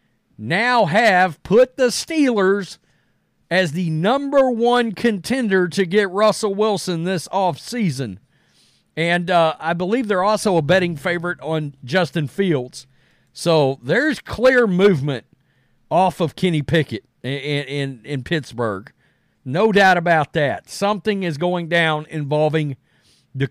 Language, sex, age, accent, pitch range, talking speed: English, male, 50-69, American, 150-210 Hz, 130 wpm